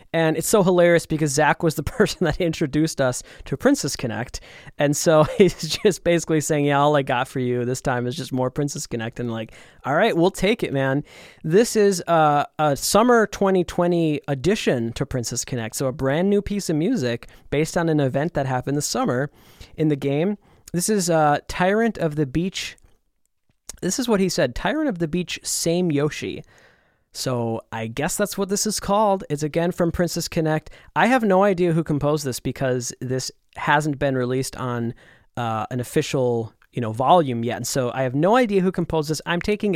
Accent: American